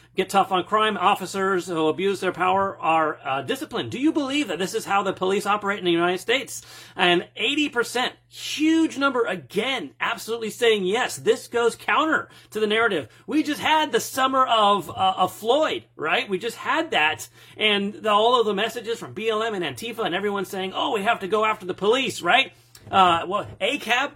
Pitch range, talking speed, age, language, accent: 175-230 Hz, 195 wpm, 30-49, English, American